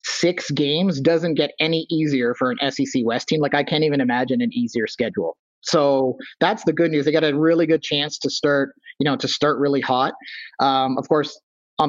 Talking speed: 210 wpm